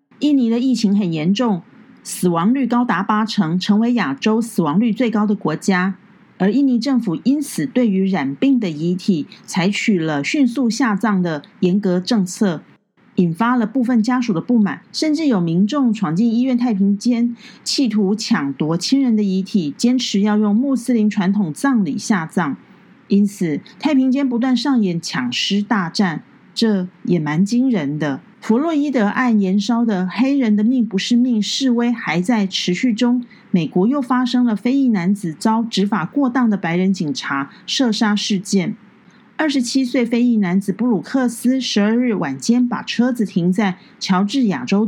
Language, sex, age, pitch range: Chinese, female, 40-59, 195-245 Hz